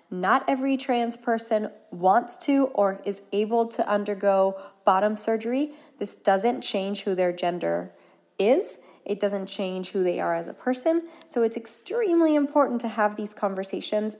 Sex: female